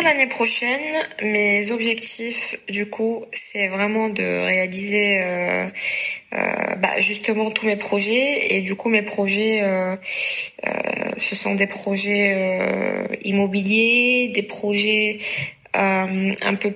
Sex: female